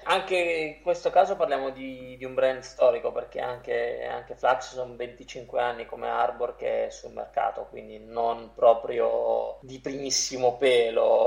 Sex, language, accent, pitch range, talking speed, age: male, Italian, native, 120-145 Hz, 150 wpm, 20-39